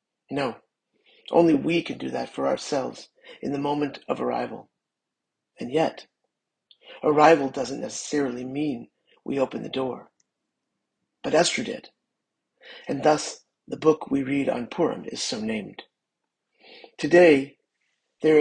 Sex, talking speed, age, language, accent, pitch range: male, 125 wpm, 40-59, English, American, 135-160 Hz